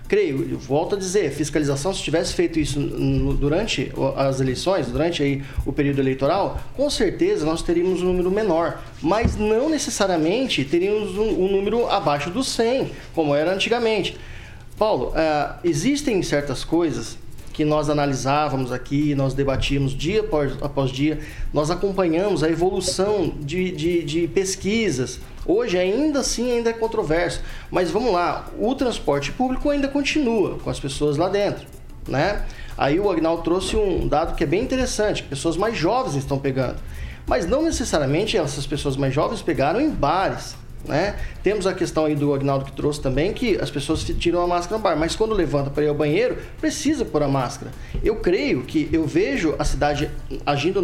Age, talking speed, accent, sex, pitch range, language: 20-39, 165 wpm, Brazilian, male, 140-210 Hz, Portuguese